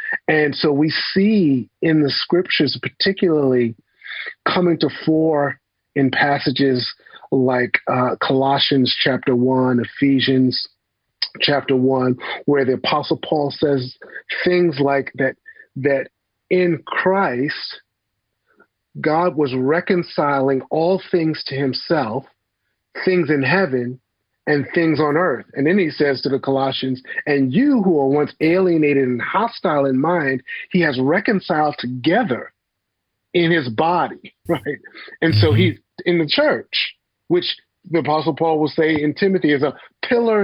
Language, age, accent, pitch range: English, 40-59, American, 130-175 Hz